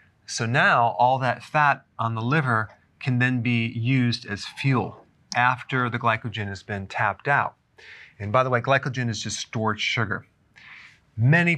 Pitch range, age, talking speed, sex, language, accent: 110-125 Hz, 30-49, 160 wpm, male, English, American